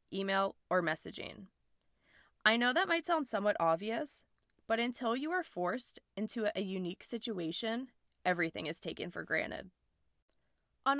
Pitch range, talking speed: 180-245 Hz, 135 wpm